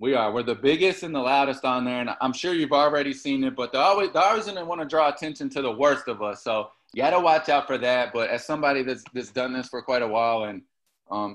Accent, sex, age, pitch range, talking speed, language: American, male, 20-39, 120-145 Hz, 275 wpm, English